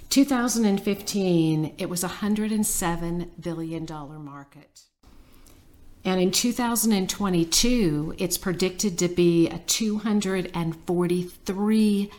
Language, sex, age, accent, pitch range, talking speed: English, female, 50-69, American, 165-200 Hz, 85 wpm